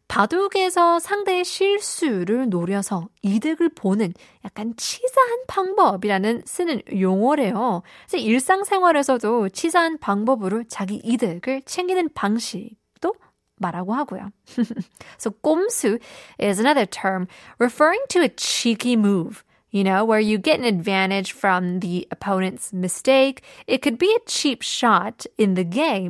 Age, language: 20-39, Korean